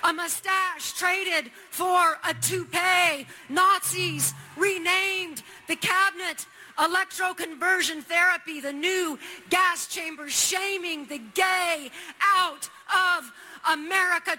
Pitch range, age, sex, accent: 295-370 Hz, 40-59, female, American